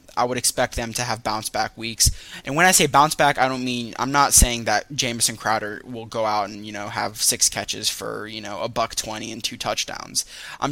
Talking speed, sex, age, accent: 240 wpm, male, 10-29, American